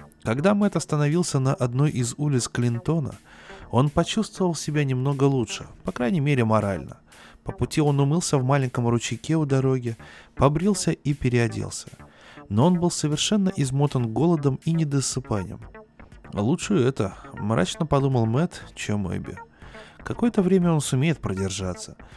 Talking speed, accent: 135 wpm, native